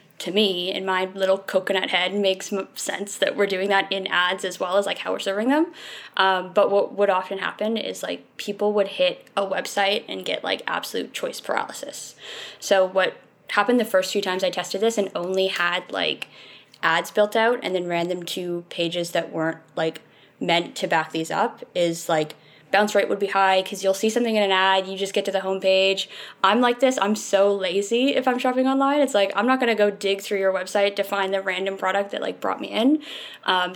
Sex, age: female, 10-29